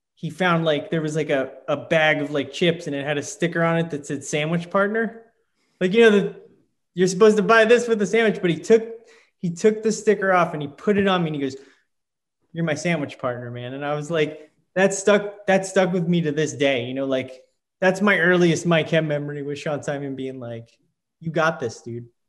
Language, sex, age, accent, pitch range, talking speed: English, male, 20-39, American, 140-170 Hz, 235 wpm